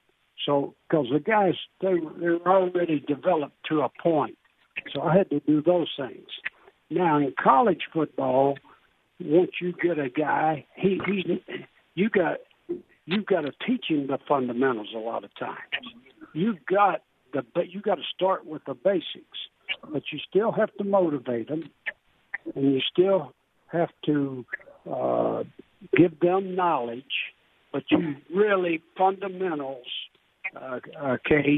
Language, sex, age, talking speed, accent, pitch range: English, male, 60-79, 145 wpm, American, 140-180 Hz